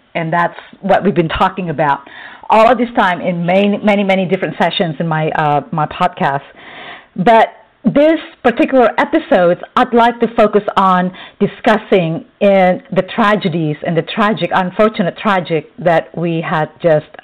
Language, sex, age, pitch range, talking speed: English, female, 50-69, 180-240 Hz, 155 wpm